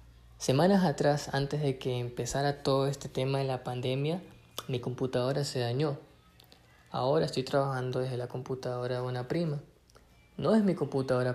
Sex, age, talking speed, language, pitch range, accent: male, 20-39, 155 wpm, Spanish, 125-145 Hz, Argentinian